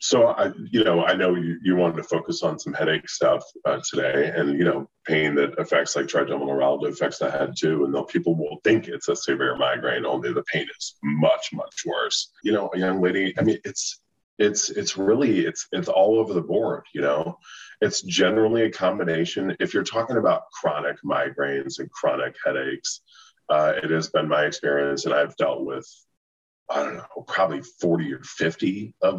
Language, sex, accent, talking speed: English, male, American, 195 wpm